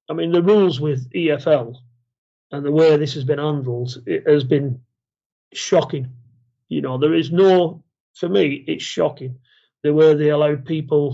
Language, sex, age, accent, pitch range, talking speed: English, male, 30-49, British, 130-155 Hz, 165 wpm